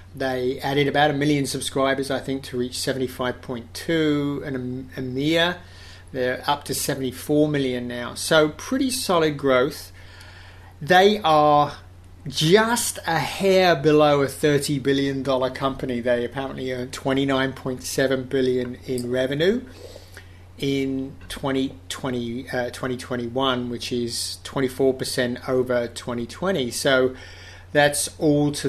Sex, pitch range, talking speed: male, 120-145 Hz, 115 wpm